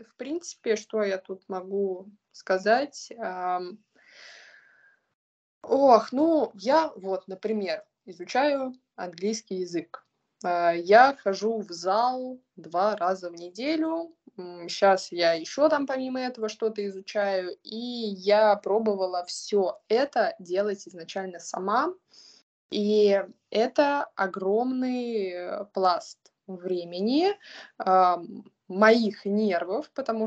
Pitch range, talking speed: 185-230 Hz, 95 wpm